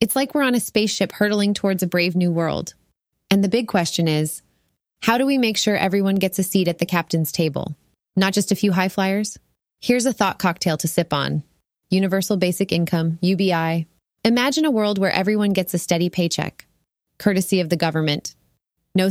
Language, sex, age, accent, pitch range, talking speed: English, female, 20-39, American, 170-205 Hz, 190 wpm